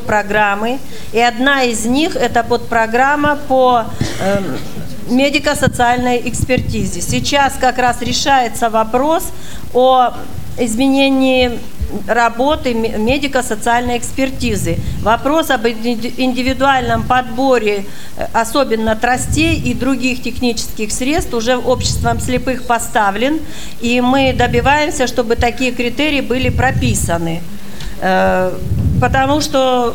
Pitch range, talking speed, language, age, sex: 230-270 Hz, 90 wpm, Russian, 40-59, female